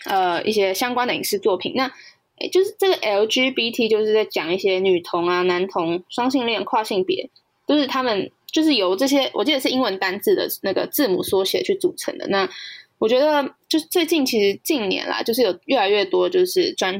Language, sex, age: Chinese, female, 10-29